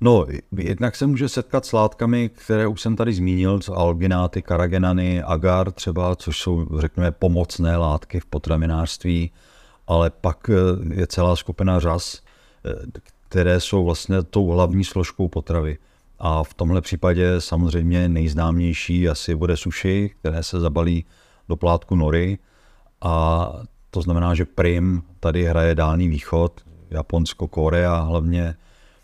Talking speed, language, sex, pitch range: 130 wpm, Czech, male, 85-95 Hz